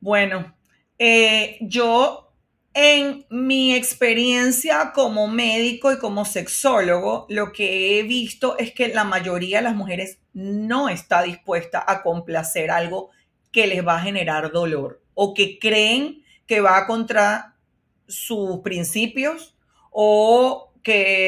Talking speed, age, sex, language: 125 wpm, 40-59, female, Spanish